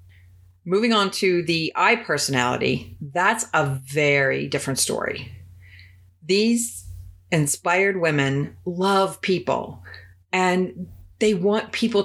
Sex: female